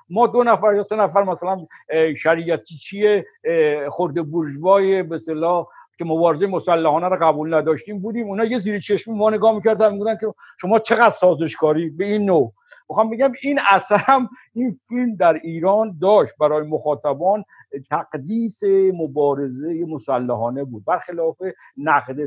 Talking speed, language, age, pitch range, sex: 135 wpm, Persian, 60-79, 155-220 Hz, male